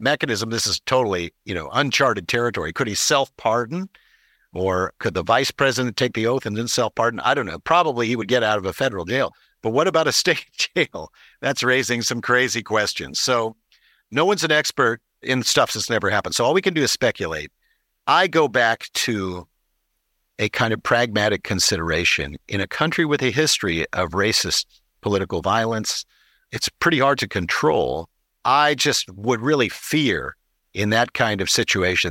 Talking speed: 180 wpm